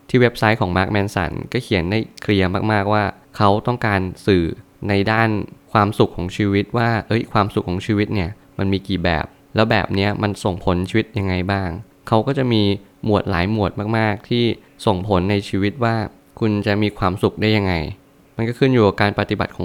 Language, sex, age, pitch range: Thai, male, 20-39, 95-115 Hz